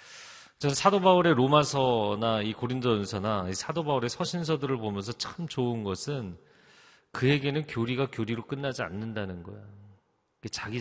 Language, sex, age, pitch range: Korean, male, 40-59, 115-170 Hz